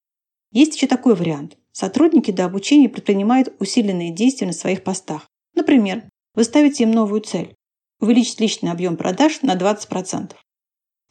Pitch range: 185-245 Hz